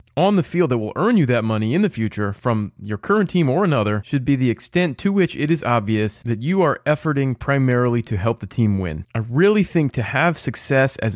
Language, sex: English, male